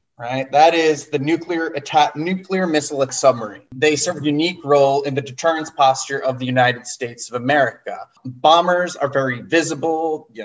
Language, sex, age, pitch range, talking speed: English, male, 20-39, 130-165 Hz, 165 wpm